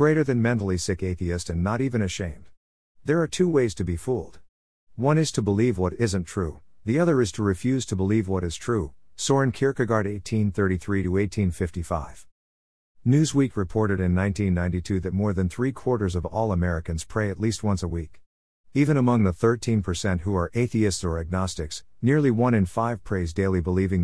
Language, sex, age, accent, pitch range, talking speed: English, male, 50-69, American, 90-115 Hz, 170 wpm